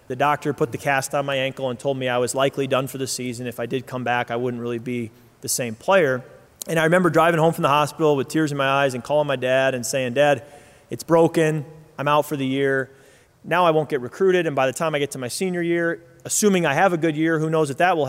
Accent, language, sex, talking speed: American, English, male, 275 wpm